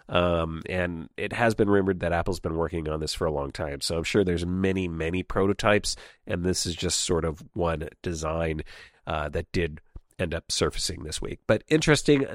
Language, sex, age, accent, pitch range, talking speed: English, male, 40-59, American, 95-130 Hz, 200 wpm